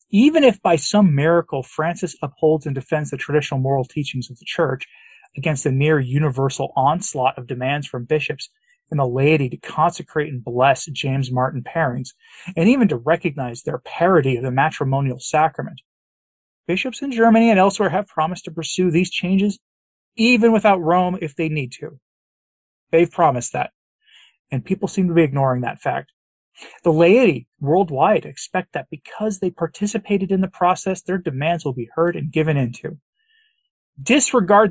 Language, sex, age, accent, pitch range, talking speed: English, male, 30-49, American, 140-190 Hz, 165 wpm